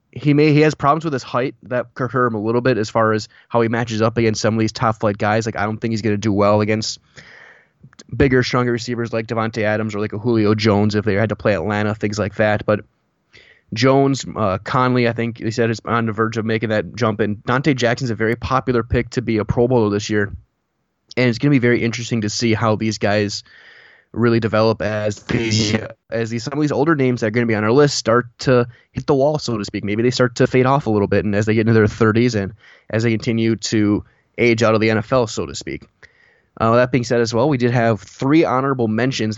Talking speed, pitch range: 255 wpm, 110-125 Hz